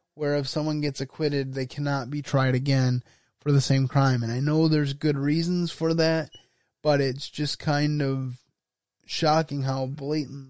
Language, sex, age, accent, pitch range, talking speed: English, male, 20-39, American, 130-150 Hz, 170 wpm